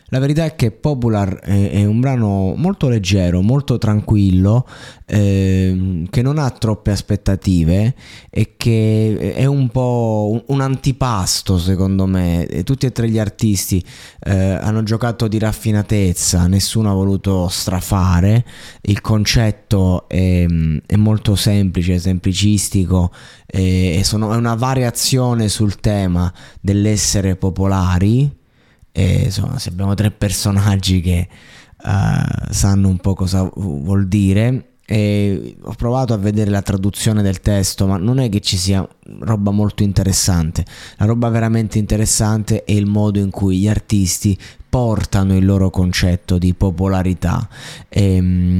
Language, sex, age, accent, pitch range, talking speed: Italian, male, 20-39, native, 95-110 Hz, 130 wpm